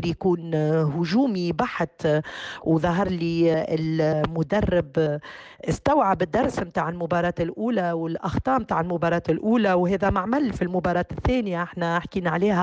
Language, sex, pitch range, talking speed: Arabic, female, 160-190 Hz, 115 wpm